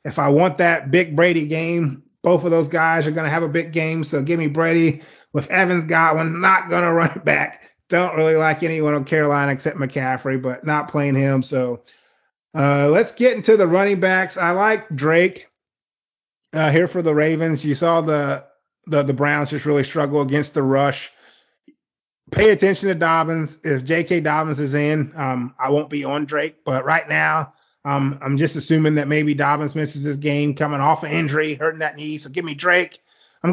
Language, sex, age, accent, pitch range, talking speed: English, male, 30-49, American, 150-180 Hz, 195 wpm